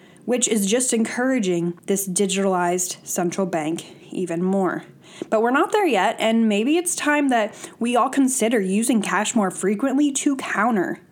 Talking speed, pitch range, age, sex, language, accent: 155 wpm, 185-245 Hz, 10-29, female, English, American